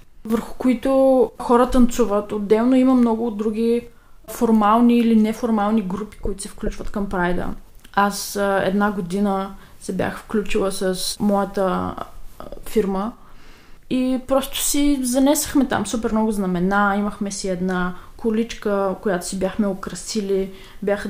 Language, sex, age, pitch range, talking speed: Bulgarian, female, 20-39, 195-235 Hz, 125 wpm